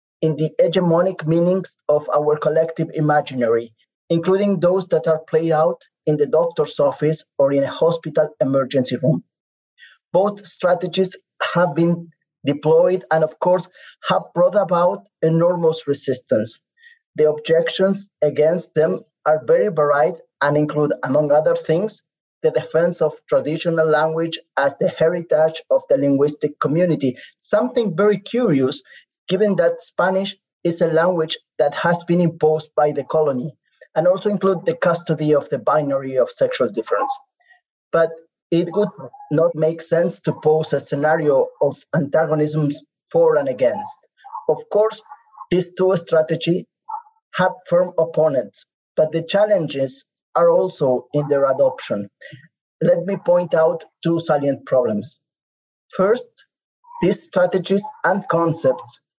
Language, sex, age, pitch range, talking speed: English, male, 30-49, 155-190 Hz, 135 wpm